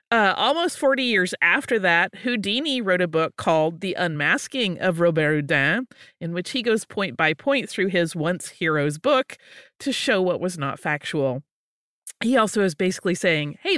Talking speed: 170 wpm